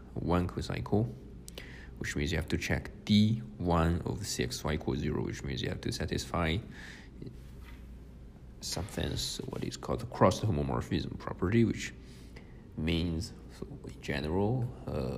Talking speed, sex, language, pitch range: 135 wpm, male, English, 65-100 Hz